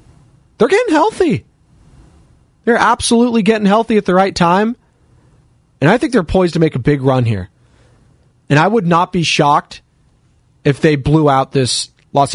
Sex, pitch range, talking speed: male, 120-150 Hz, 165 wpm